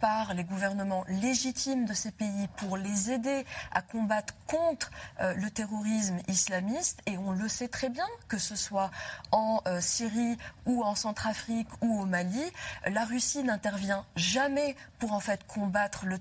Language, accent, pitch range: French, French, 185-240 Hz